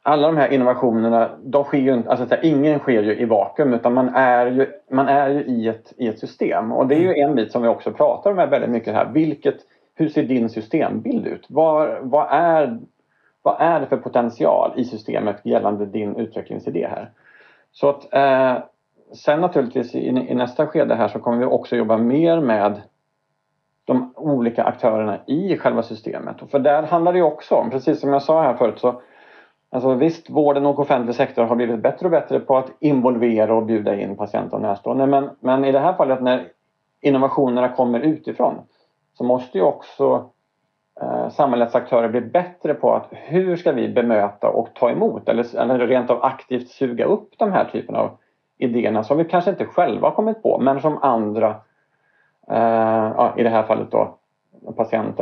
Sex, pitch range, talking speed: male, 115-150 Hz, 190 wpm